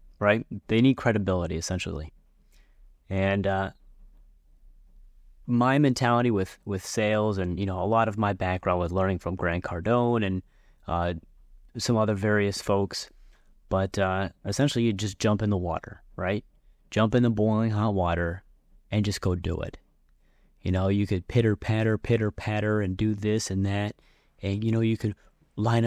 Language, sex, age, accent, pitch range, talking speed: English, male, 30-49, American, 90-110 Hz, 165 wpm